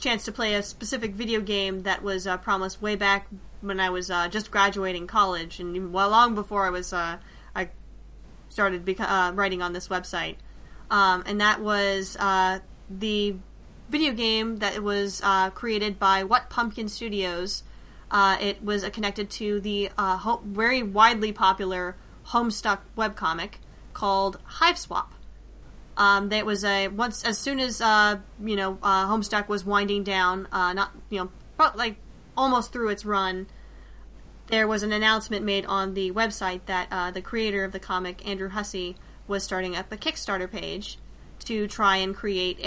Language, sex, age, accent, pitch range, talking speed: English, female, 10-29, American, 190-215 Hz, 165 wpm